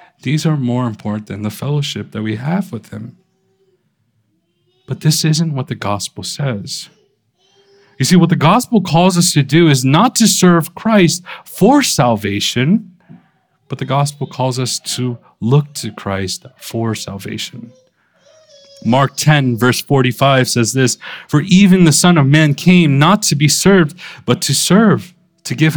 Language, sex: English, male